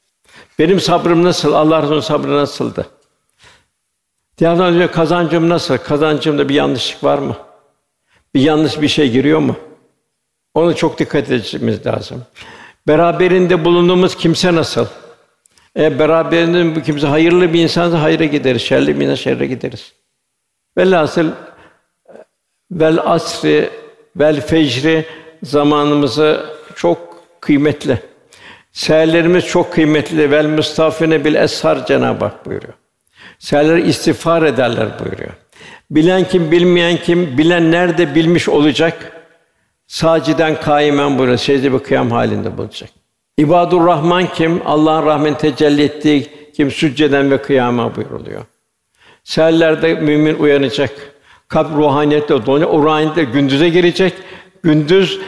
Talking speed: 115 wpm